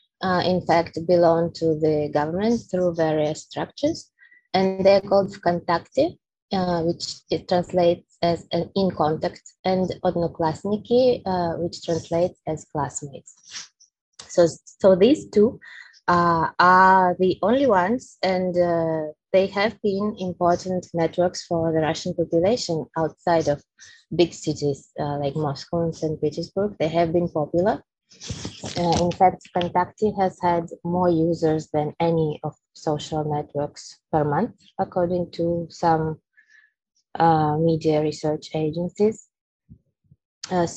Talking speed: 125 wpm